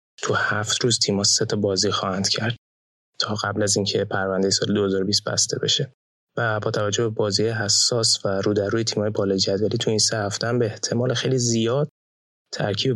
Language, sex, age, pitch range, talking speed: Persian, male, 20-39, 100-115 Hz, 180 wpm